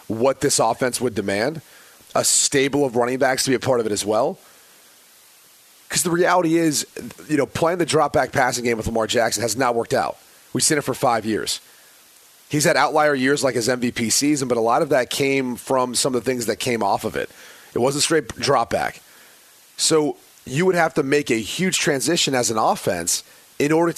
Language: English